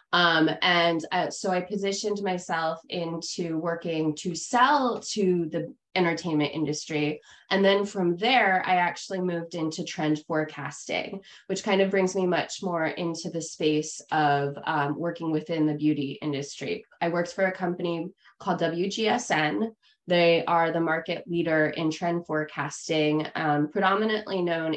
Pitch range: 155-180 Hz